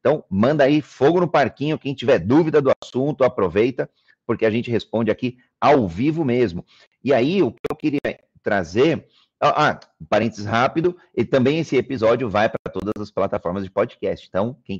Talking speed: 180 wpm